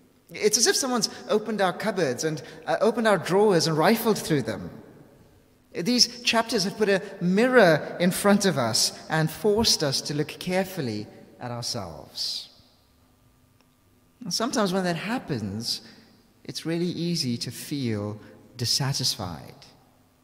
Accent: British